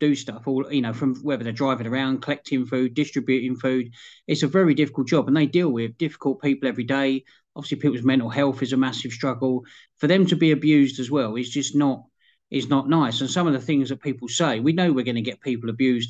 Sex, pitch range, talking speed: male, 125-150 Hz, 240 wpm